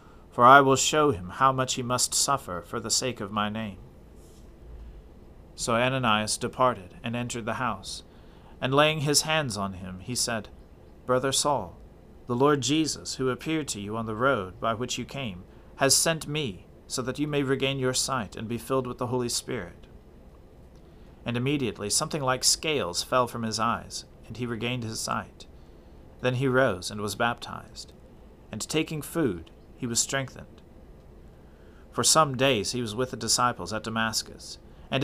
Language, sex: English, male